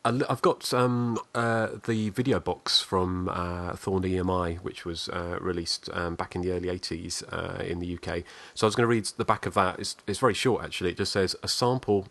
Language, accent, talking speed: English, British, 225 wpm